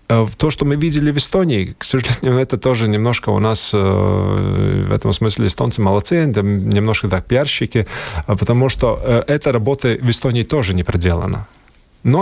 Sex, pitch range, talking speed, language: male, 105-145 Hz, 150 wpm, Russian